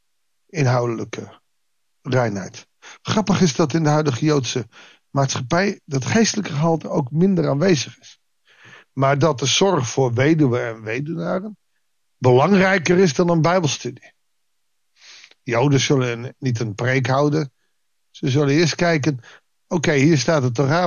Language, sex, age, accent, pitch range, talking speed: Dutch, male, 60-79, Dutch, 125-160 Hz, 130 wpm